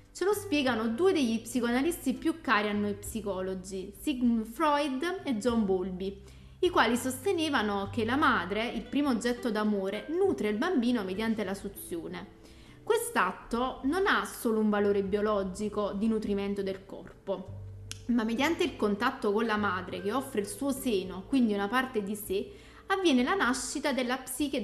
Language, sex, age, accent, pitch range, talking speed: Italian, female, 30-49, native, 205-270 Hz, 160 wpm